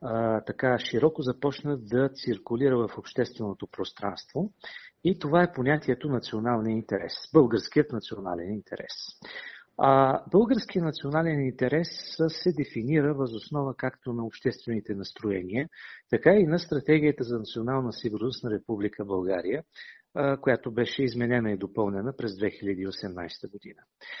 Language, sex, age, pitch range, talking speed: Bulgarian, male, 50-69, 110-150 Hz, 115 wpm